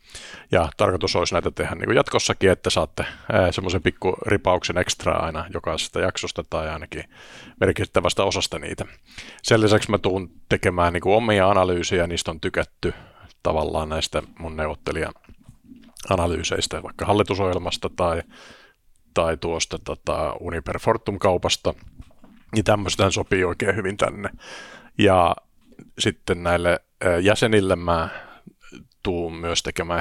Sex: male